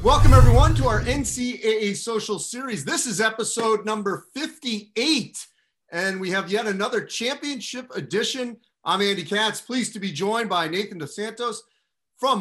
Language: English